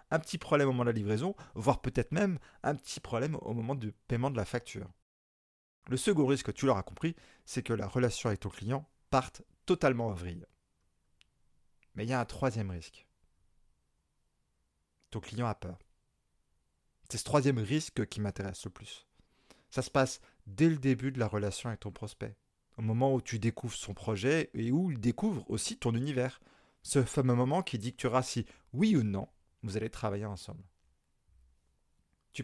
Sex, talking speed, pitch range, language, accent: male, 180 wpm, 100-135 Hz, French, French